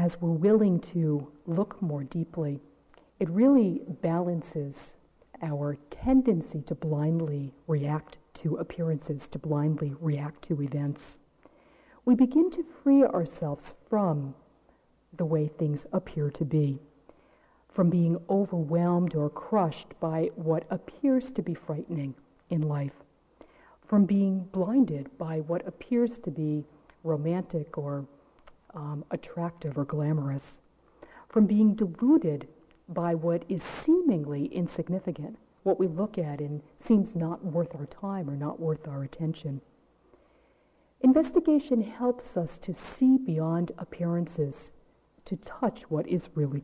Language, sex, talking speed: English, female, 125 wpm